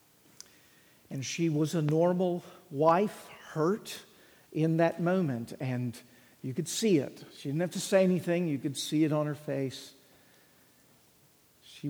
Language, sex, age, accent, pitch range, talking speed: English, male, 50-69, American, 130-165 Hz, 145 wpm